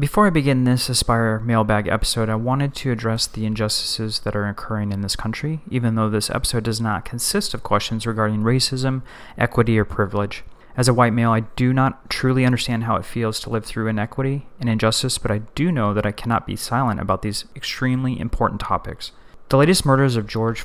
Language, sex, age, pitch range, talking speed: English, male, 30-49, 110-125 Hz, 205 wpm